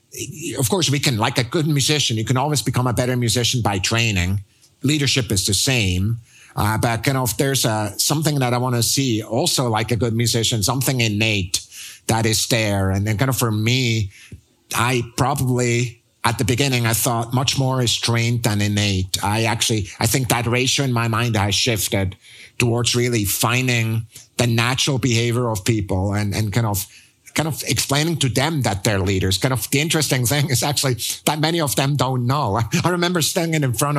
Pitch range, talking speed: 110-130 Hz, 200 wpm